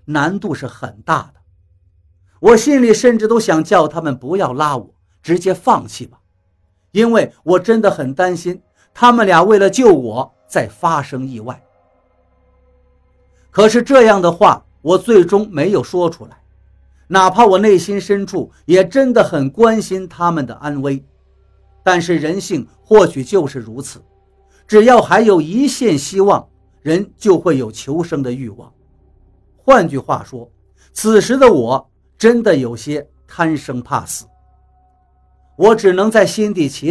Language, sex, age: Chinese, male, 50-69